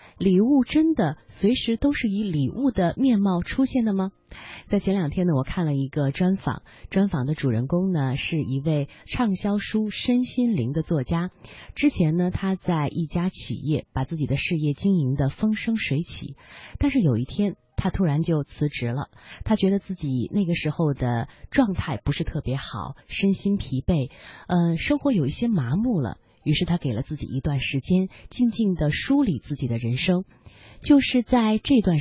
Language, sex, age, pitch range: Chinese, female, 30-49, 145-205 Hz